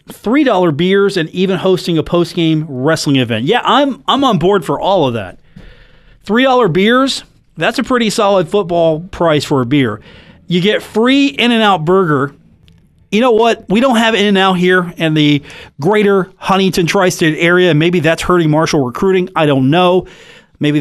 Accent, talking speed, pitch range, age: American, 165 wpm, 155-200 Hz, 30-49